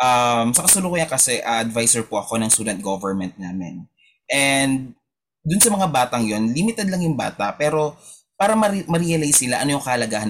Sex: male